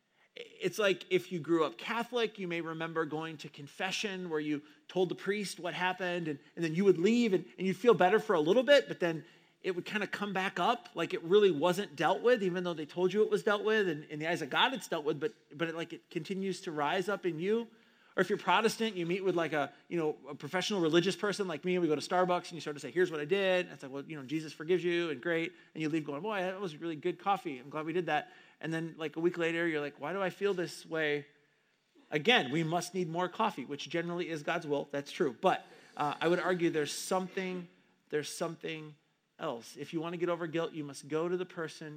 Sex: male